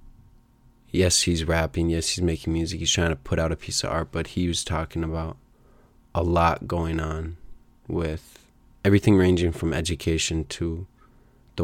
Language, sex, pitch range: English, male, 80-100 Hz